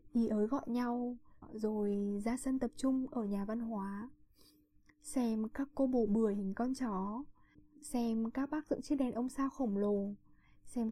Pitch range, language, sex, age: 210-260 Hz, Vietnamese, female, 10-29